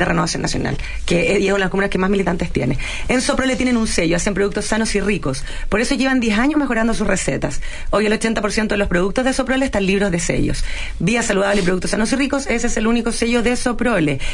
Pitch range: 195-260 Hz